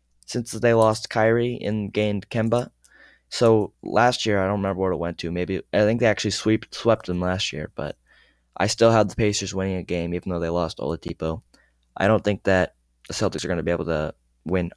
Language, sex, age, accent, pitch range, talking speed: English, male, 20-39, American, 90-110 Hz, 220 wpm